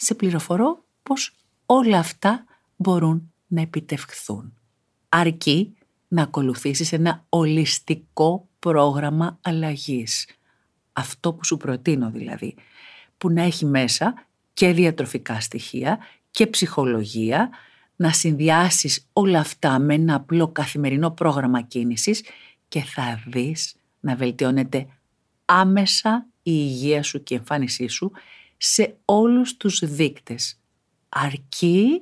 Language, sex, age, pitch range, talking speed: Greek, female, 50-69, 125-175 Hz, 105 wpm